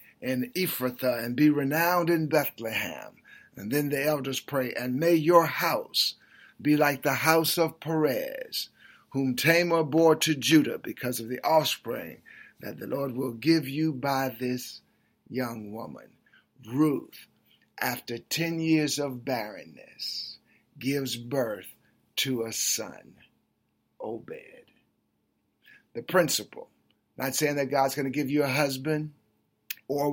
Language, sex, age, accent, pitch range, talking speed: English, male, 50-69, American, 130-160 Hz, 130 wpm